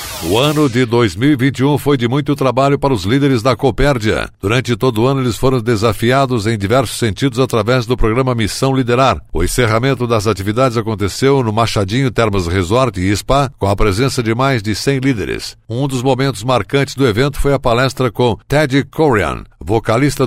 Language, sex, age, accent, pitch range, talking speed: Portuguese, male, 60-79, Brazilian, 105-135 Hz, 180 wpm